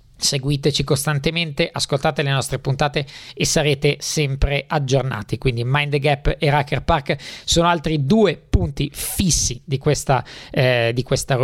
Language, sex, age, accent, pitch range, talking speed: Italian, male, 20-39, native, 135-160 Hz, 140 wpm